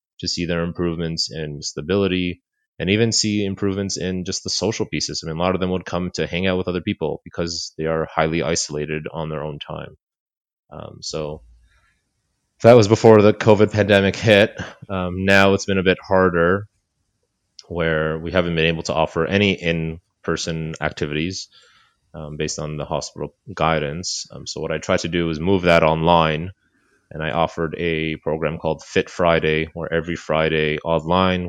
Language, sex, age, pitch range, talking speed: English, male, 30-49, 80-95 Hz, 175 wpm